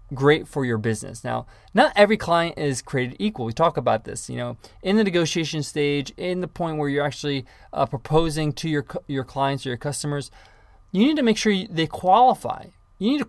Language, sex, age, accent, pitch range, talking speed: English, male, 20-39, American, 130-175 Hz, 210 wpm